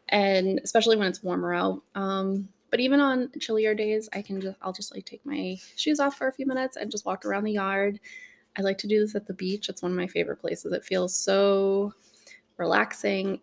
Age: 20-39